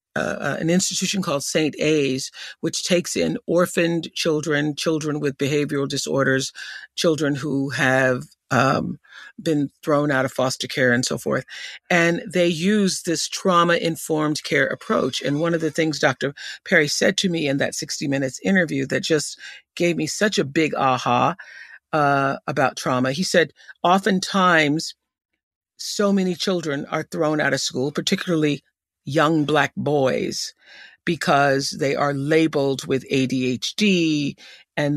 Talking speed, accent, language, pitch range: 140 wpm, American, English, 140-170 Hz